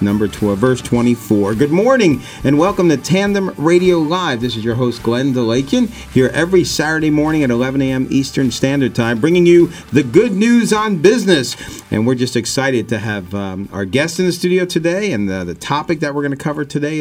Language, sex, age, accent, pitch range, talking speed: English, male, 50-69, American, 100-140 Hz, 205 wpm